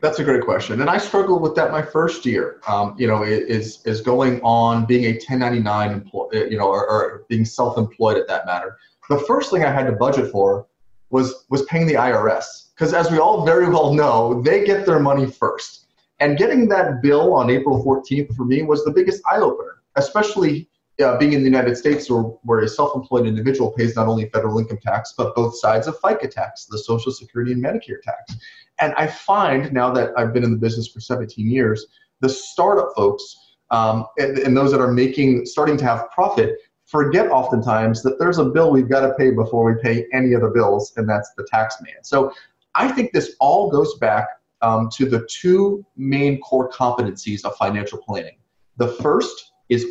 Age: 30-49